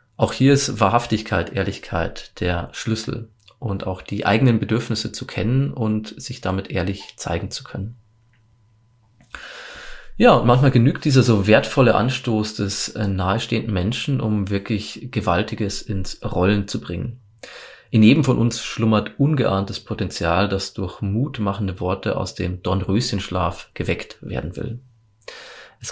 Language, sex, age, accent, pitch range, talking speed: German, male, 30-49, German, 100-120 Hz, 130 wpm